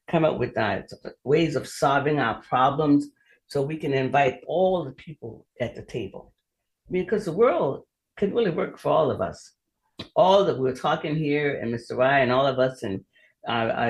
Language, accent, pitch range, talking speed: English, American, 120-150 Hz, 190 wpm